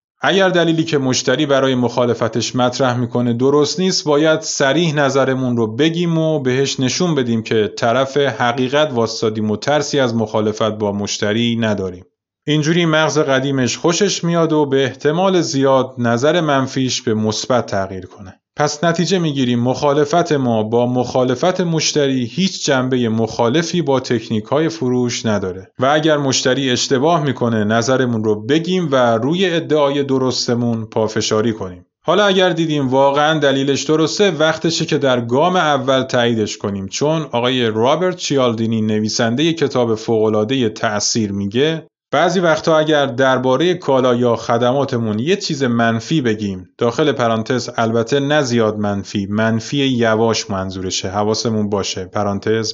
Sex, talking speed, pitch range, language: male, 140 wpm, 115-150 Hz, Persian